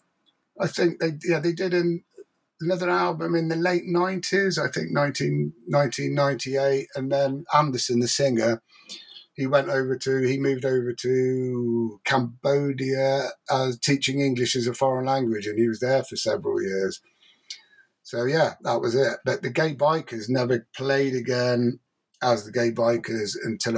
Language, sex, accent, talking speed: English, male, British, 155 wpm